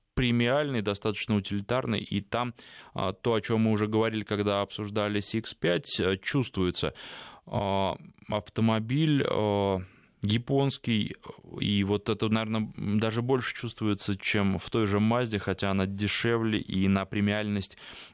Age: 20-39